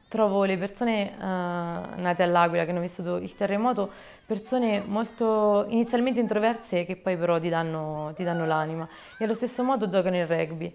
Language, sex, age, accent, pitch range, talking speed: Italian, female, 20-39, native, 165-195 Hz, 155 wpm